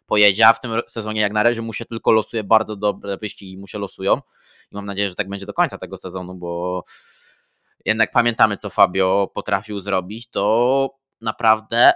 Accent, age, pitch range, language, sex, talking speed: native, 20-39, 100-110 Hz, Polish, male, 180 wpm